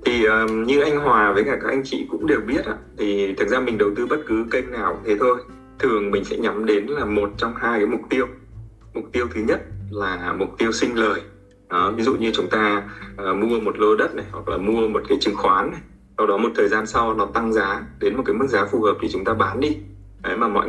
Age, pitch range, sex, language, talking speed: 20-39, 105-140 Hz, male, Vietnamese, 265 wpm